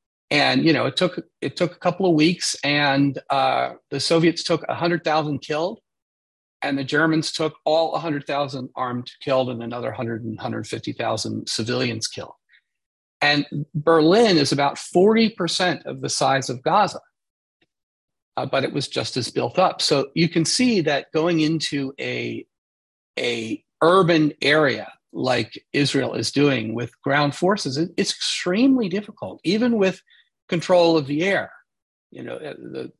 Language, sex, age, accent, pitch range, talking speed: English, male, 40-59, American, 130-170 Hz, 150 wpm